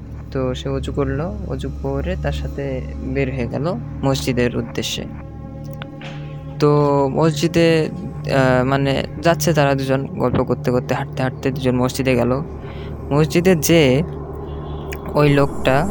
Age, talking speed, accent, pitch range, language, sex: 20-39, 115 wpm, native, 125-150 Hz, Bengali, female